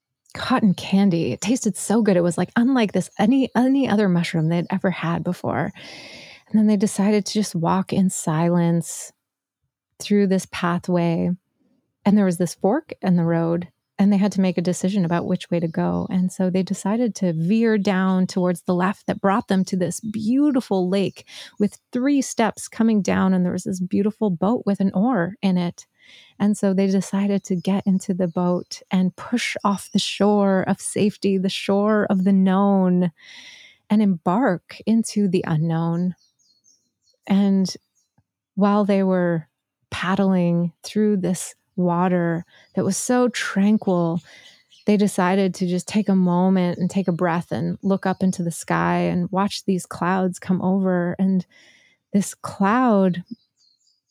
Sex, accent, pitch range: female, American, 180-205 Hz